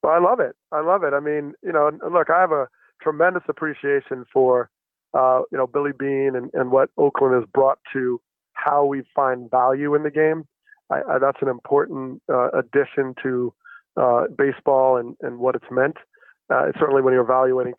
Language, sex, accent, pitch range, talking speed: English, male, American, 130-155 Hz, 190 wpm